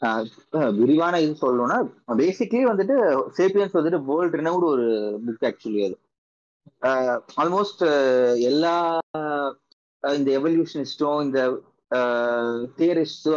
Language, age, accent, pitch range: Tamil, 30-49, native, 130-175 Hz